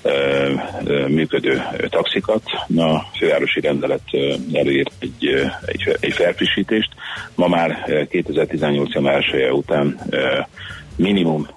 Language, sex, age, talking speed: Hungarian, male, 40-59, 90 wpm